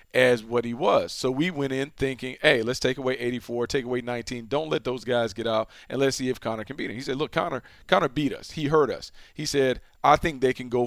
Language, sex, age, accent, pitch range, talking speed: English, male, 40-59, American, 120-140 Hz, 265 wpm